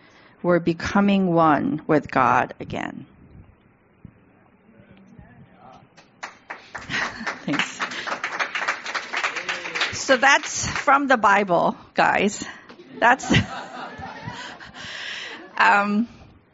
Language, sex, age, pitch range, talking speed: English, female, 50-69, 195-265 Hz, 55 wpm